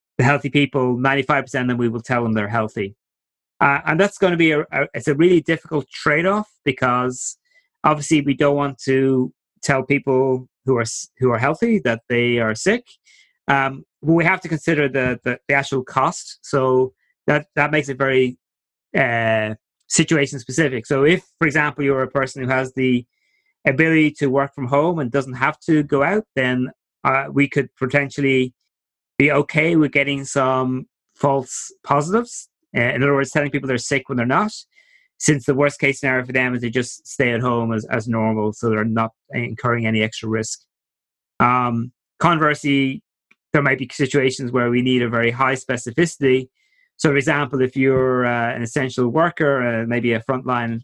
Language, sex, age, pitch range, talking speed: English, male, 30-49, 120-150 Hz, 180 wpm